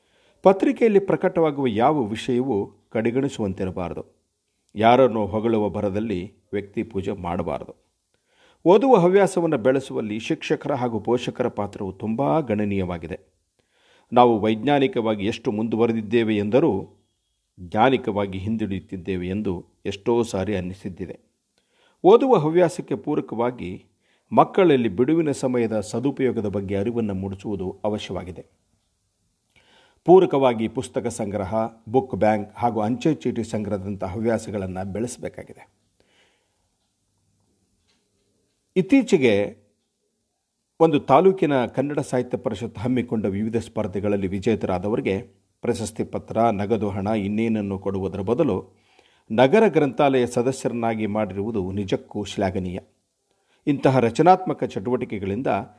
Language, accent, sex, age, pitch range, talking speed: Kannada, native, male, 50-69, 100-130 Hz, 85 wpm